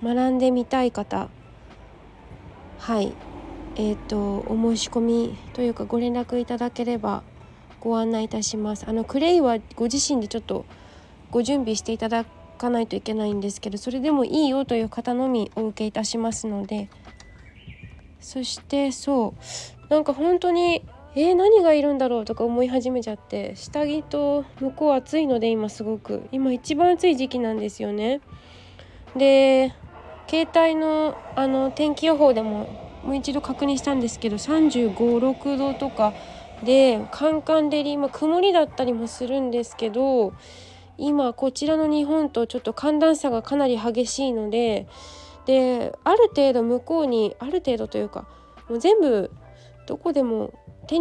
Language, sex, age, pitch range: Japanese, female, 20-39, 225-290 Hz